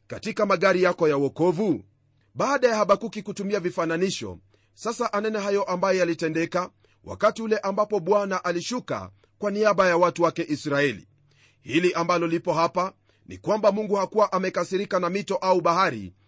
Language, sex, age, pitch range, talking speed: Swahili, male, 40-59, 140-200 Hz, 145 wpm